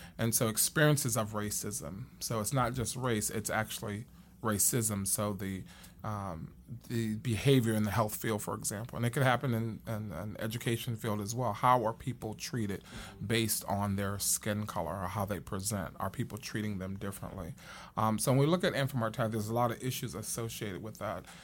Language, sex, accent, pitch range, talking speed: English, male, American, 105-120 Hz, 190 wpm